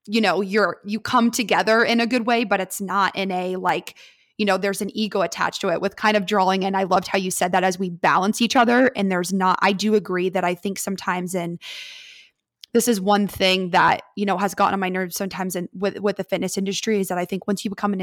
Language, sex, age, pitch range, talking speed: English, female, 20-39, 185-215 Hz, 260 wpm